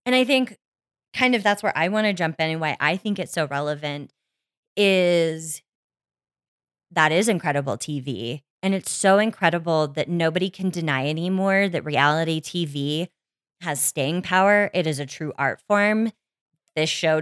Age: 20-39